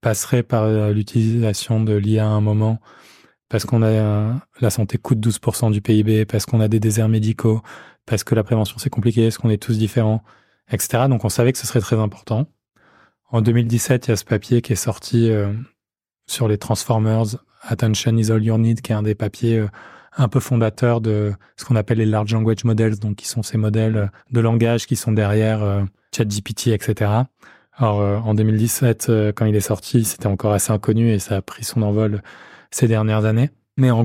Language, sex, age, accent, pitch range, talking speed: French, male, 20-39, French, 105-115 Hz, 200 wpm